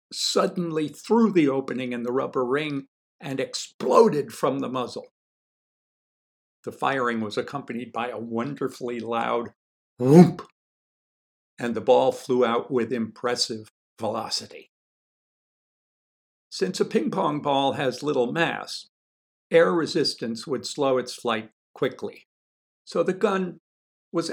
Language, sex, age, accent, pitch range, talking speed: English, male, 60-79, American, 115-140 Hz, 120 wpm